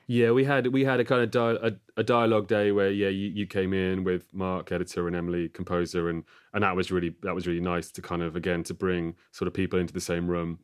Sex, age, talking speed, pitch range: male, 30-49, 265 wpm, 85-95 Hz